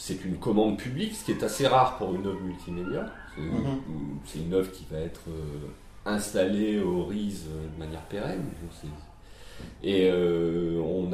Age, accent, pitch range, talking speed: 40-59, French, 85-100 Hz, 150 wpm